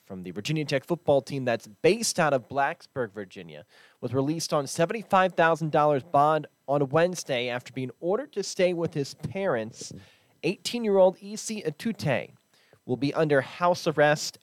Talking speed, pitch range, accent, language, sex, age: 145 wpm, 125-160 Hz, American, English, male, 30-49